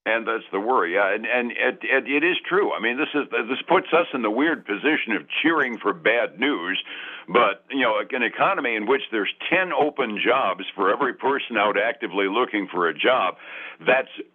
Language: English